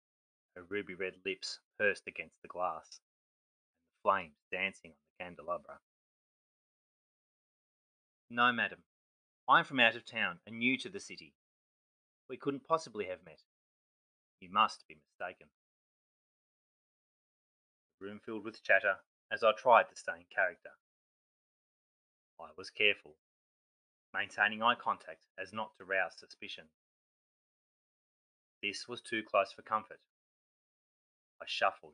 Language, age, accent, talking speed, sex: English, 30-49, Australian, 125 wpm, male